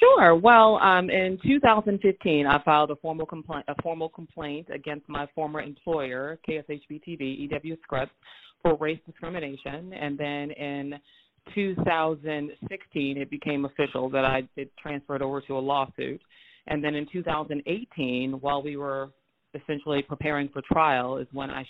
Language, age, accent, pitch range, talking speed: English, 30-49, American, 135-150 Hz, 135 wpm